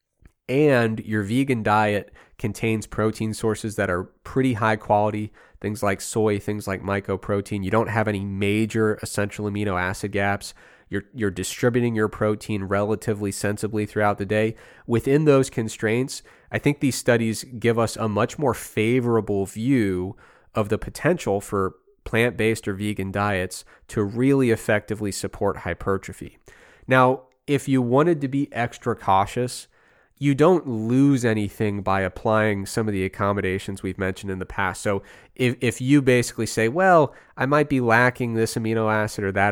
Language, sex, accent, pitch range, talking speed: English, male, American, 100-120 Hz, 155 wpm